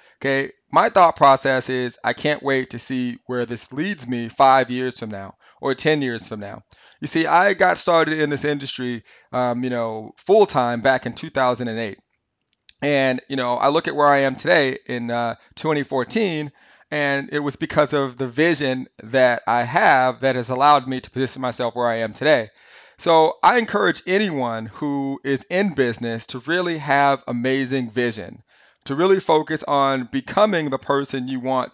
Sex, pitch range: male, 125-150 Hz